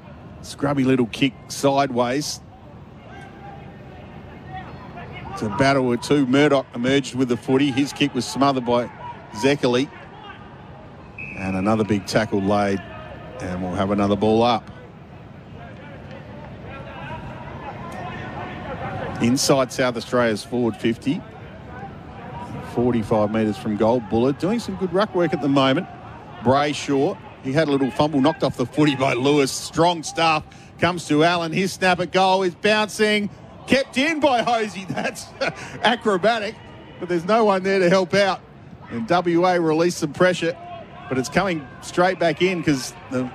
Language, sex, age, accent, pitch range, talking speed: English, male, 40-59, Australian, 125-175 Hz, 140 wpm